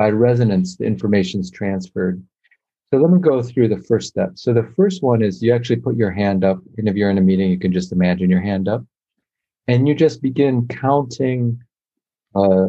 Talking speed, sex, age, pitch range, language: 210 wpm, male, 40-59, 95-120 Hz, English